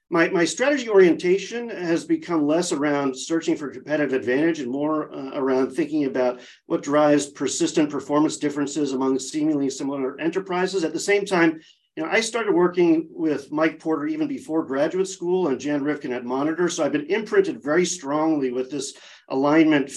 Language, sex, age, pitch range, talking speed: English, male, 40-59, 135-175 Hz, 170 wpm